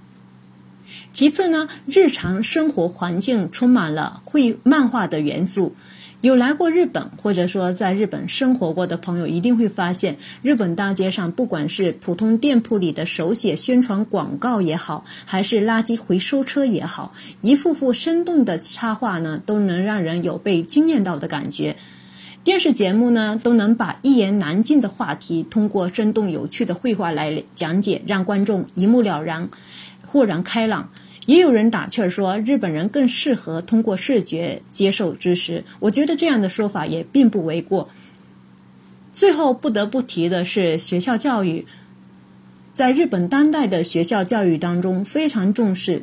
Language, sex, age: Chinese, female, 30-49